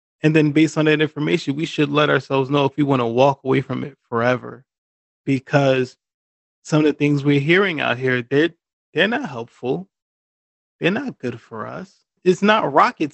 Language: English